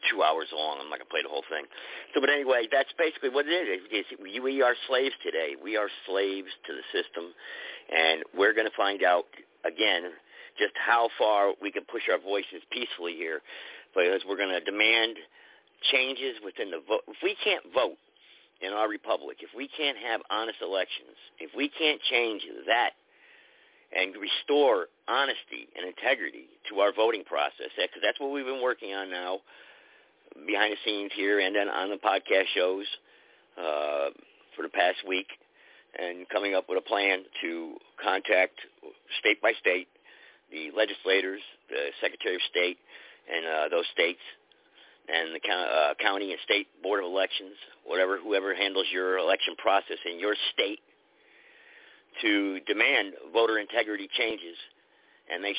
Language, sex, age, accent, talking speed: English, male, 50-69, American, 165 wpm